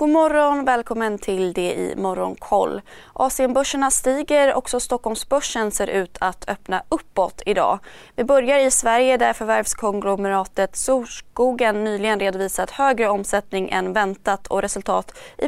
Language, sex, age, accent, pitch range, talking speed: Swedish, female, 20-39, native, 195-255 Hz, 130 wpm